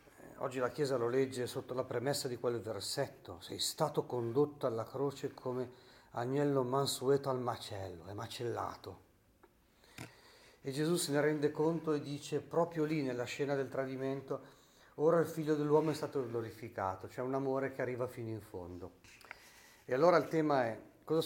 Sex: male